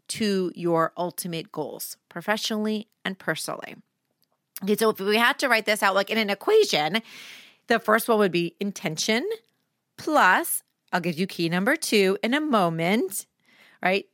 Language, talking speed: English, 155 wpm